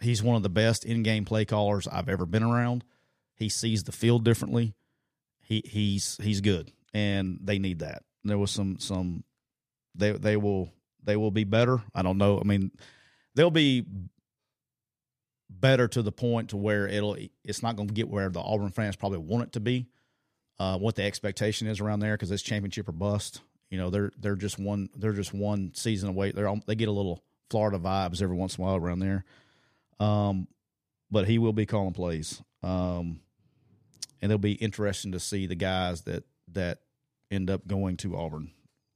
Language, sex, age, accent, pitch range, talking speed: English, male, 40-59, American, 95-115 Hz, 195 wpm